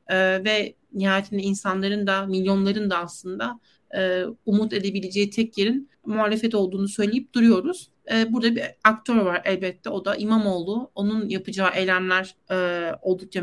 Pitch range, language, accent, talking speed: 190-240 Hz, Turkish, native, 120 wpm